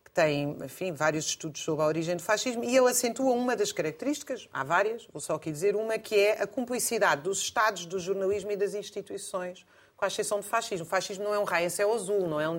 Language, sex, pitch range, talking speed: Portuguese, female, 180-225 Hz, 245 wpm